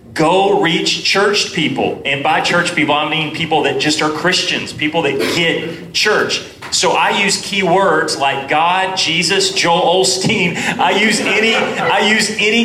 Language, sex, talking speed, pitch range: English, male, 160 wpm, 145-195 Hz